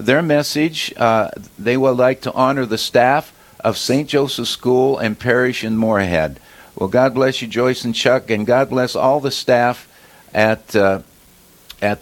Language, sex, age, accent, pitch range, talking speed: English, male, 50-69, American, 115-150 Hz, 170 wpm